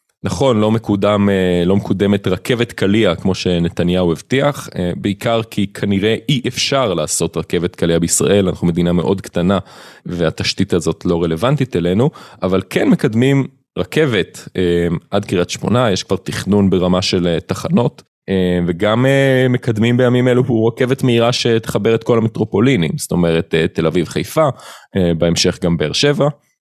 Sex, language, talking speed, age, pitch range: male, Hebrew, 135 wpm, 30-49, 95-130 Hz